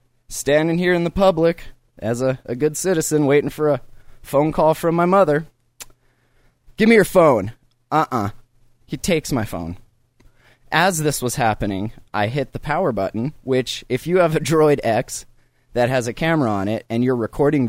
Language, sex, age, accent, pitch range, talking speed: English, male, 20-39, American, 120-155 Hz, 180 wpm